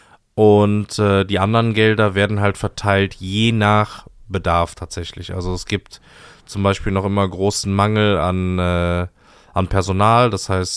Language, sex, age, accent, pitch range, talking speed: German, male, 20-39, German, 90-105 Hz, 145 wpm